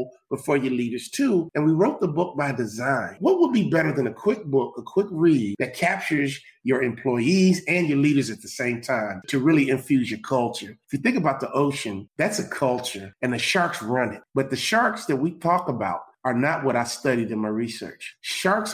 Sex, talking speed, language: male, 220 wpm, English